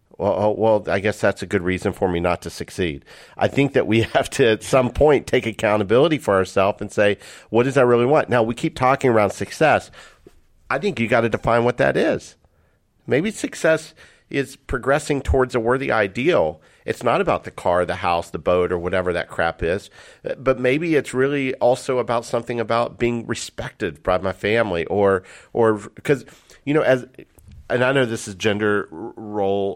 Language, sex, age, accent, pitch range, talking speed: English, male, 50-69, American, 95-115 Hz, 195 wpm